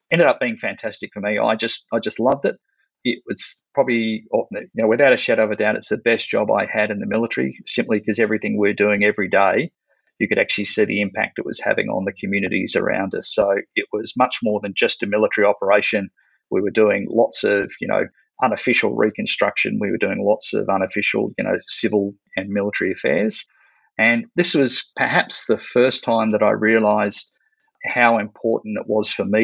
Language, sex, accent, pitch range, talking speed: English, male, Australian, 105-115 Hz, 205 wpm